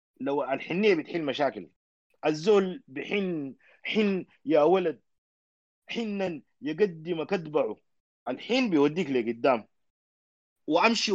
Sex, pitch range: male, 140-185 Hz